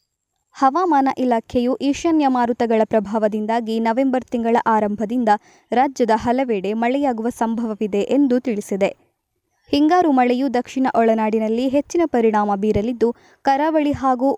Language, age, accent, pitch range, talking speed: Kannada, 20-39, native, 220-280 Hz, 95 wpm